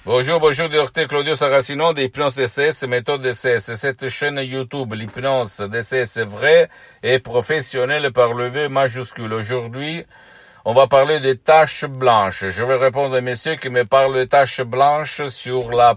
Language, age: Italian, 50-69